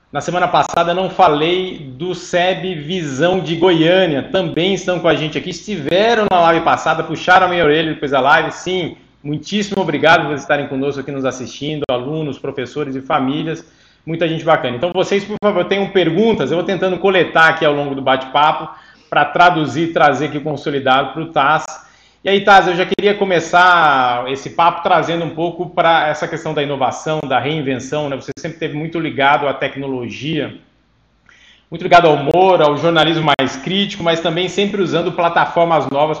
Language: Portuguese